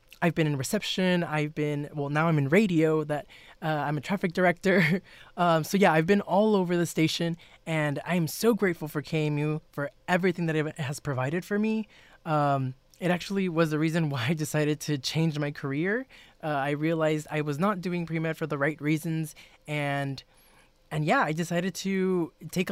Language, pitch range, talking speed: English, 150-180 Hz, 190 wpm